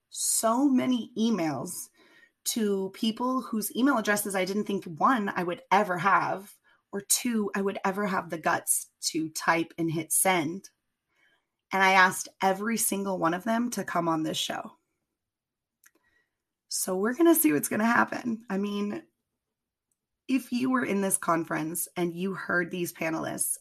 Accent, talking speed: American, 165 wpm